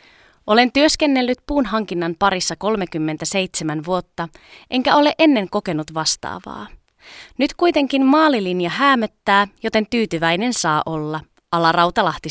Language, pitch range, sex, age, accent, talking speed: Finnish, 170-245 Hz, female, 20-39, native, 100 wpm